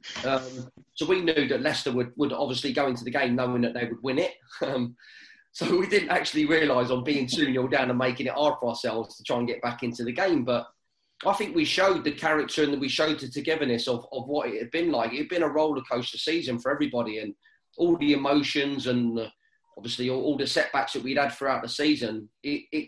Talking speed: 235 wpm